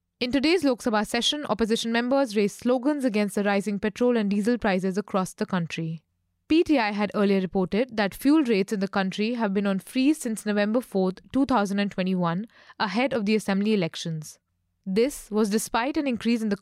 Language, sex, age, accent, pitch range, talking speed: English, female, 20-39, Indian, 195-250 Hz, 175 wpm